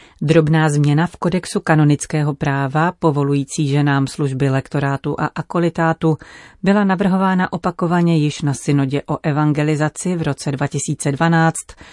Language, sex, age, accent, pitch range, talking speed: Czech, female, 40-59, native, 140-170 Hz, 115 wpm